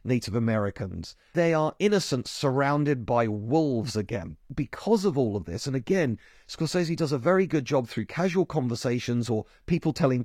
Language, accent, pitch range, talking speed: English, British, 115-170 Hz, 165 wpm